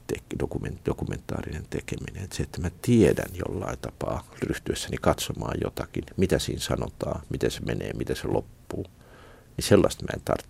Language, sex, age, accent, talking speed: Finnish, male, 50-69, native, 145 wpm